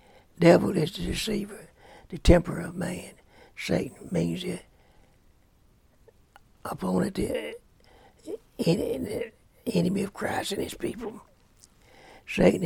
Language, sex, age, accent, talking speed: English, male, 60-79, American, 95 wpm